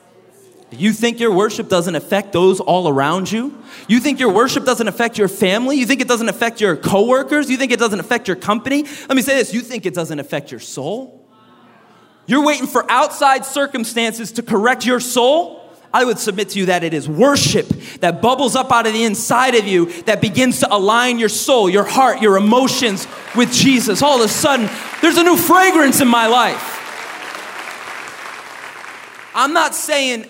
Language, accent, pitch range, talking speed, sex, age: English, American, 195-255 Hz, 190 wpm, male, 30-49